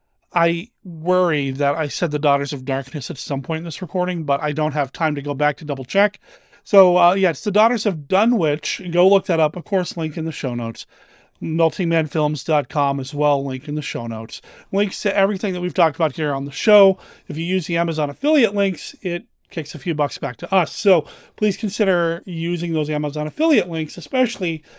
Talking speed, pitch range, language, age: 215 wpm, 150-185 Hz, English, 30-49